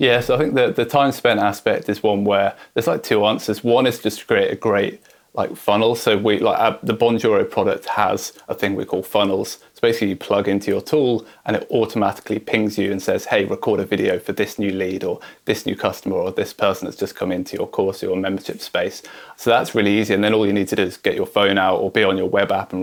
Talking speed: 260 wpm